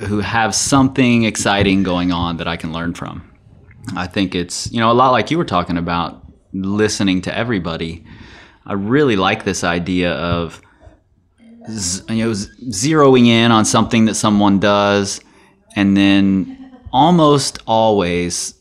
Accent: American